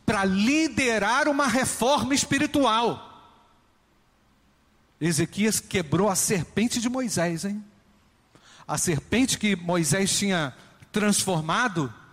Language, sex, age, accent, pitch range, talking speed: Portuguese, male, 50-69, Brazilian, 145-210 Hz, 90 wpm